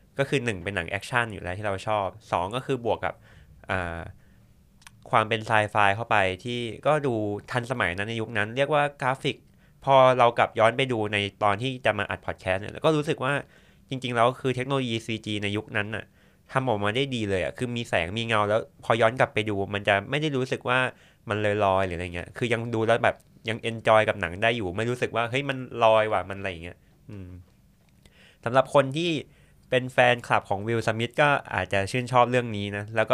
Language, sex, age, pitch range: Thai, male, 20-39, 100-125 Hz